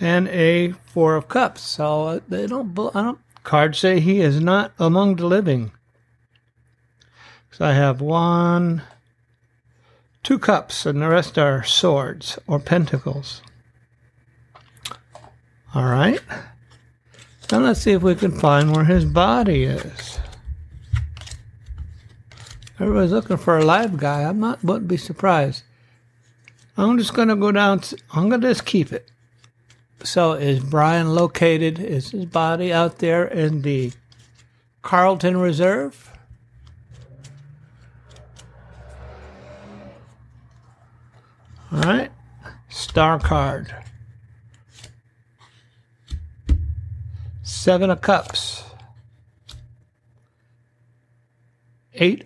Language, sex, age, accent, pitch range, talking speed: English, male, 60-79, American, 120-170 Hz, 100 wpm